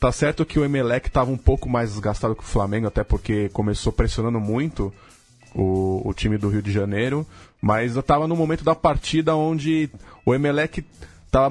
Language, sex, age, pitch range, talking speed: Portuguese, male, 20-39, 105-135 Hz, 190 wpm